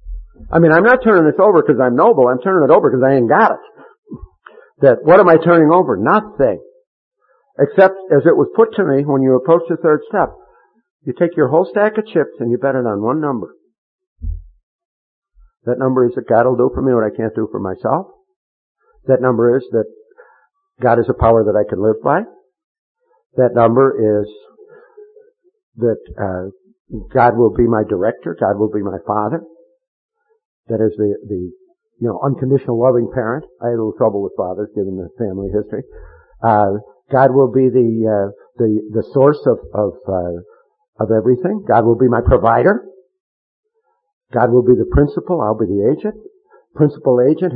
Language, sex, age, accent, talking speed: English, male, 50-69, American, 185 wpm